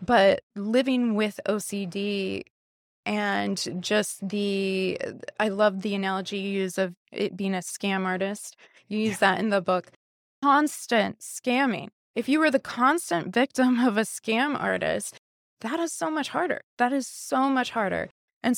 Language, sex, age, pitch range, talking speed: English, female, 20-39, 200-250 Hz, 155 wpm